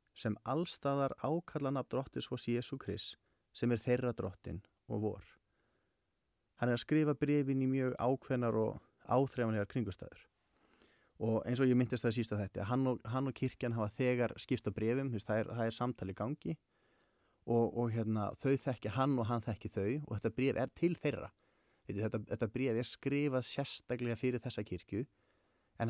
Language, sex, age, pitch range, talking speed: English, male, 30-49, 110-130 Hz, 180 wpm